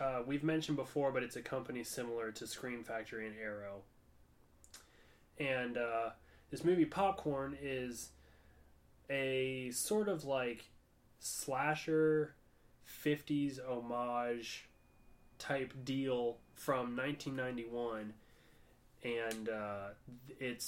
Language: English